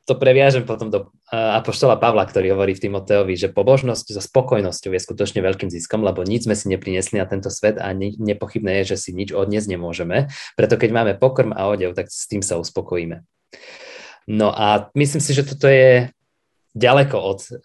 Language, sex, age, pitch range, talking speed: Slovak, male, 20-39, 95-120 Hz, 185 wpm